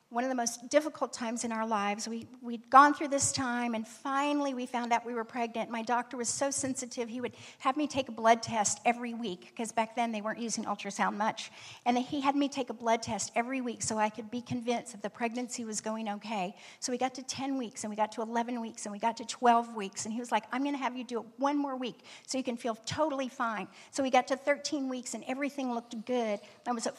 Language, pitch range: English, 225-260 Hz